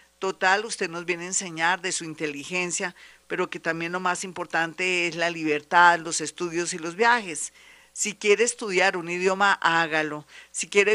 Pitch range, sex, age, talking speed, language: 165-195 Hz, female, 50-69, 170 wpm, Spanish